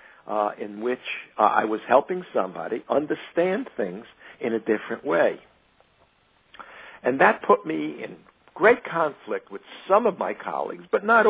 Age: 60-79